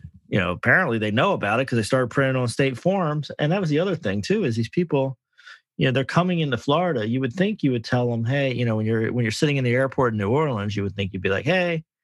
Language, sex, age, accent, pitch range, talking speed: English, male, 30-49, American, 95-125 Hz, 290 wpm